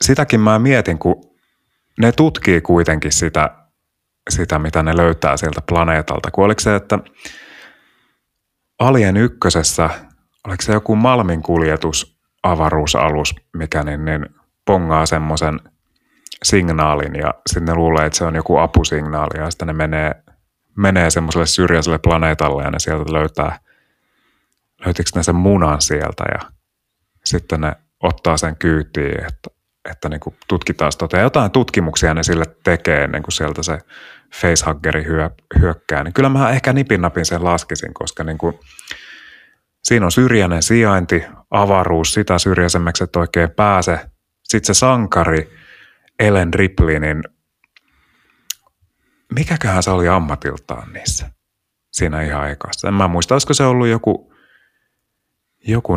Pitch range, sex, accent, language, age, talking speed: 80-100 Hz, male, native, Finnish, 30-49, 125 wpm